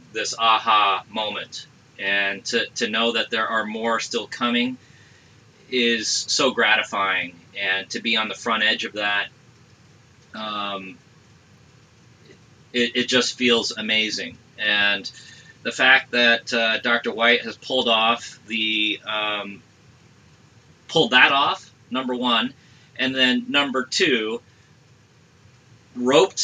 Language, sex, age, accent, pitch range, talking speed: English, male, 30-49, American, 110-130 Hz, 120 wpm